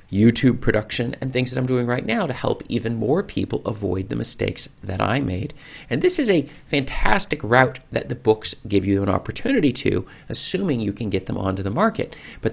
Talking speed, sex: 205 wpm, male